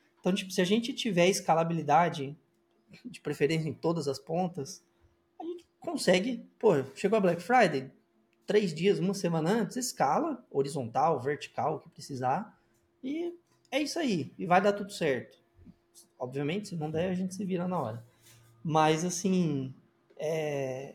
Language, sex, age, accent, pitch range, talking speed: Portuguese, male, 20-39, Brazilian, 150-205 Hz, 155 wpm